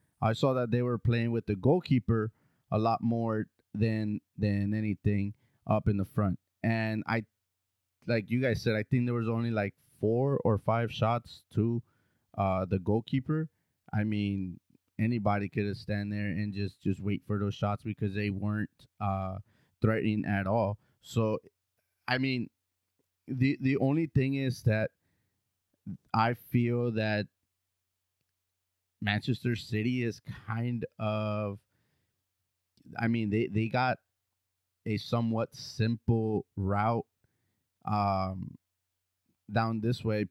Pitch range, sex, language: 100-120 Hz, male, English